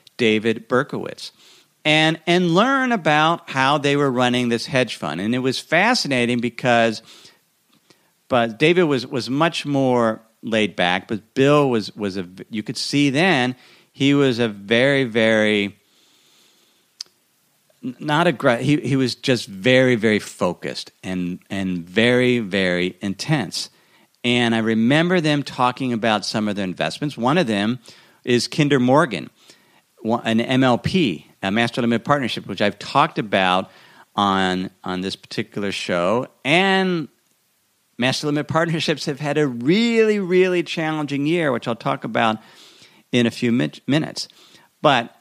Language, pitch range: English, 110-155 Hz